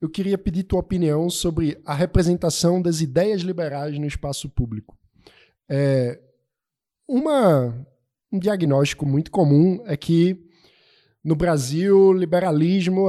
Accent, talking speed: Brazilian, 115 wpm